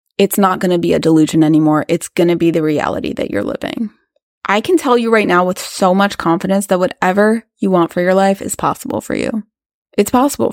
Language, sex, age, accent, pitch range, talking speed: English, female, 20-39, American, 165-205 Hz, 230 wpm